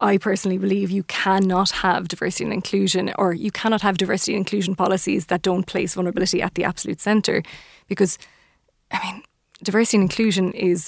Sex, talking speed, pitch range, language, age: female, 175 wpm, 180-205 Hz, English, 20-39